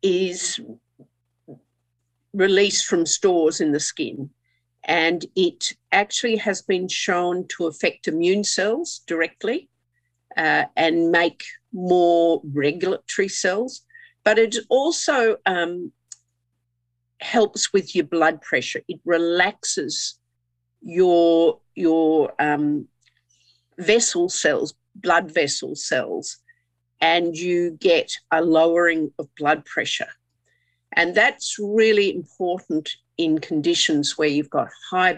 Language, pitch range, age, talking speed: English, 120-200 Hz, 50-69, 105 wpm